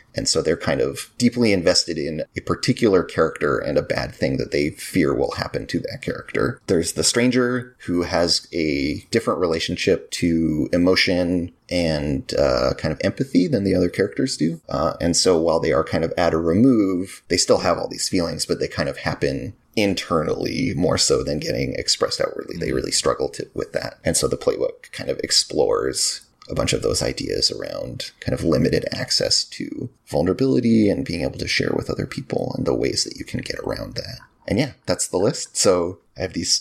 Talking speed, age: 200 wpm, 30-49